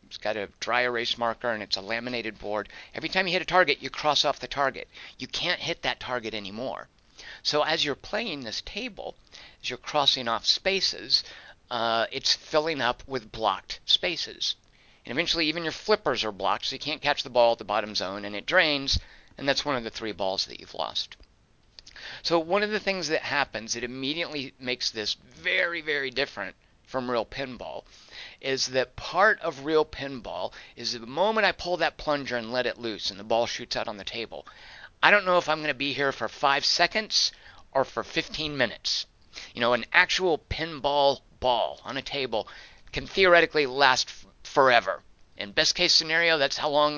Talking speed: 195 wpm